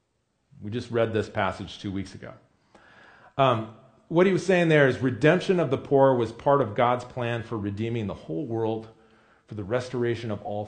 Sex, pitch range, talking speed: male, 110-145 Hz, 190 wpm